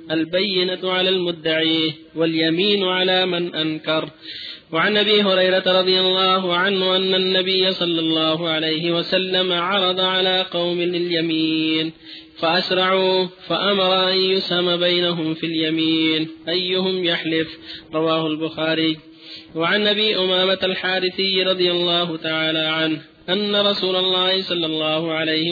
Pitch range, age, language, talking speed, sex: 160-185 Hz, 30-49, Arabic, 115 wpm, male